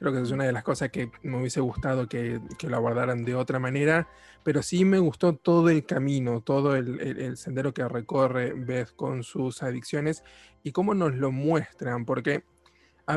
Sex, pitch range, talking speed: male, 125-150 Hz, 195 wpm